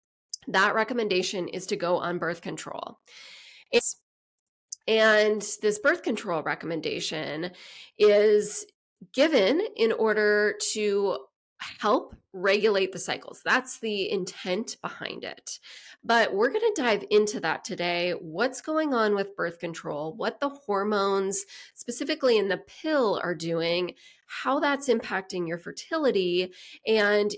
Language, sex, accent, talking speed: English, female, American, 125 wpm